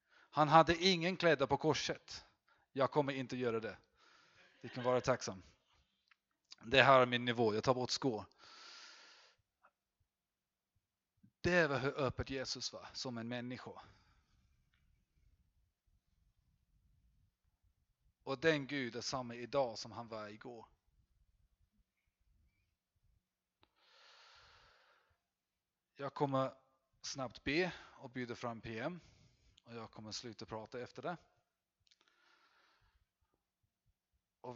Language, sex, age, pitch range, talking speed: Swedish, male, 30-49, 105-150 Hz, 105 wpm